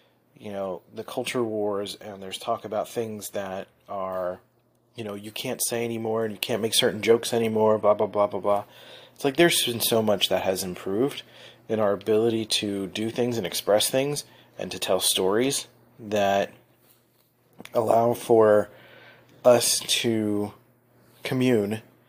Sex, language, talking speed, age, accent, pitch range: male, English, 160 wpm, 30-49, American, 100-120 Hz